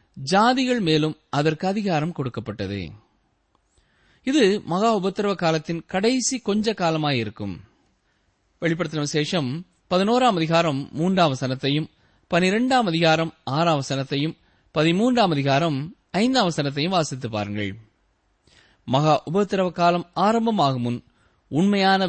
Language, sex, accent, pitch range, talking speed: Tamil, male, native, 140-205 Hz, 80 wpm